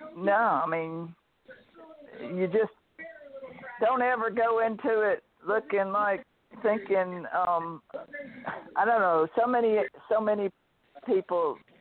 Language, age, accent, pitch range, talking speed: English, 60-79, American, 170-225 Hz, 110 wpm